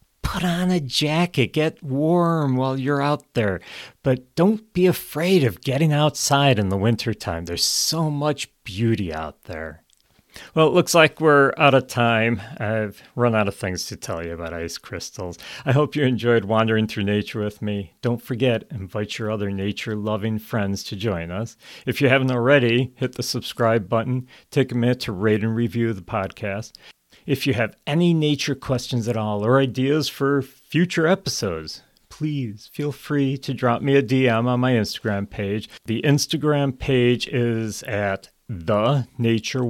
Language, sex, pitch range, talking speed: English, male, 110-140 Hz, 170 wpm